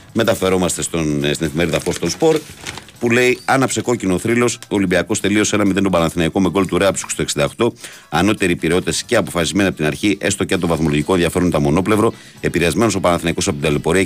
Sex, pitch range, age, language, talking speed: male, 85-115 Hz, 50-69, Greek, 205 wpm